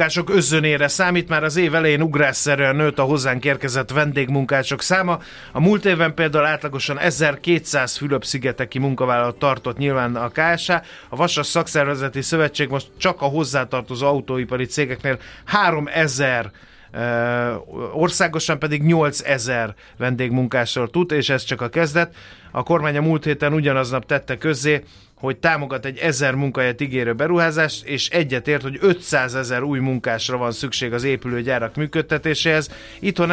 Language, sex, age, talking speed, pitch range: Hungarian, male, 30-49, 135 wpm, 125-155 Hz